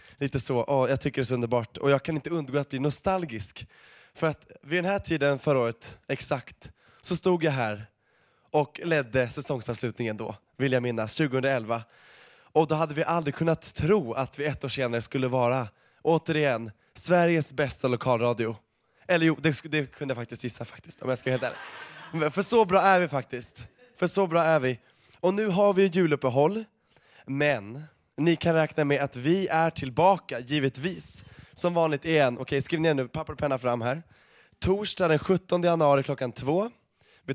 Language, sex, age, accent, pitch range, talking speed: Swedish, male, 20-39, native, 125-165 Hz, 190 wpm